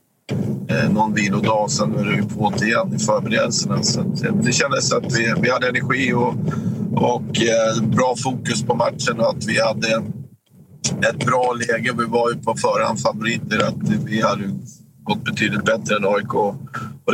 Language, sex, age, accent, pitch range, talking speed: Swedish, male, 50-69, native, 110-125 Hz, 160 wpm